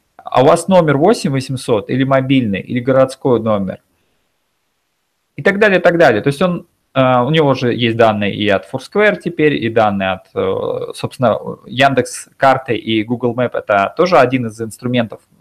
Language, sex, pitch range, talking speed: Russian, male, 110-155 Hz, 165 wpm